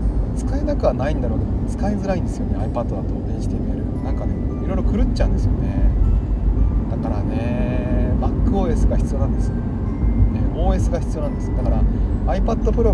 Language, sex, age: Japanese, male, 30-49